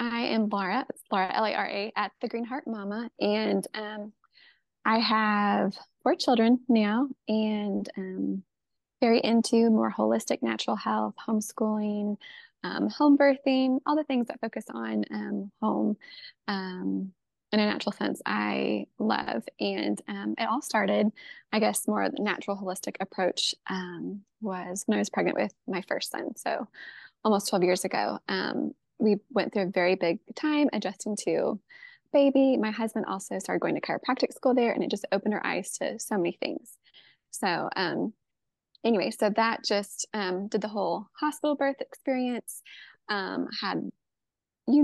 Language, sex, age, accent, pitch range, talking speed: English, female, 20-39, American, 195-245 Hz, 160 wpm